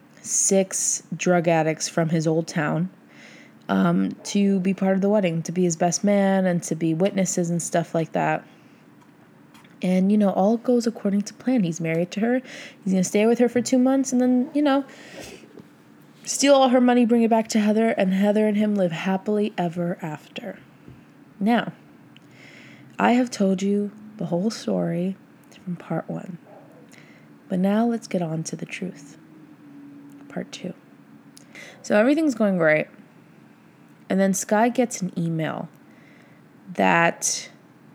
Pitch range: 170-235 Hz